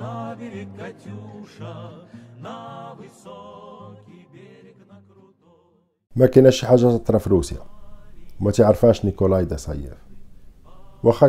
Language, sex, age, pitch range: Arabic, male, 50-69, 85-120 Hz